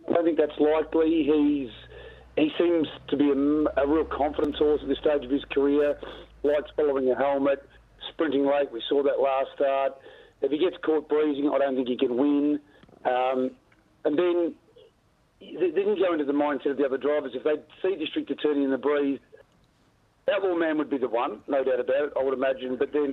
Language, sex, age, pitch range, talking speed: English, male, 50-69, 130-150 Hz, 210 wpm